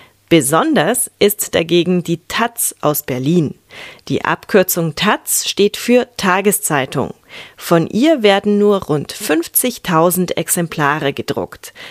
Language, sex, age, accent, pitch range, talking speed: German, female, 30-49, German, 160-225 Hz, 105 wpm